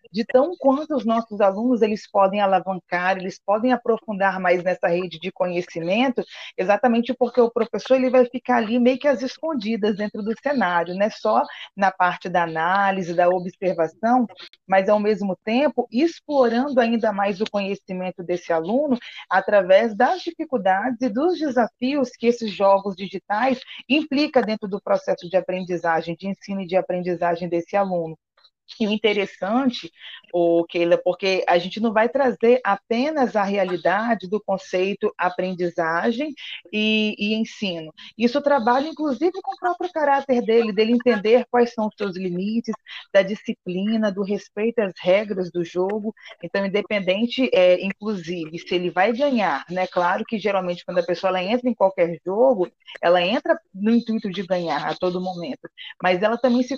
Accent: Brazilian